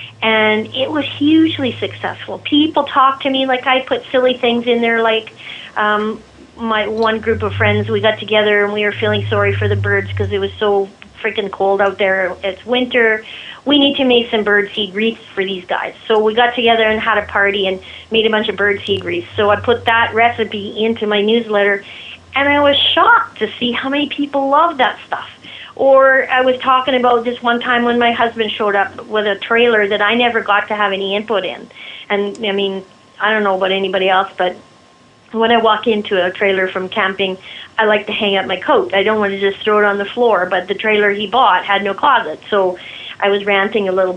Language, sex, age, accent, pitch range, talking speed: English, female, 40-59, American, 200-240 Hz, 220 wpm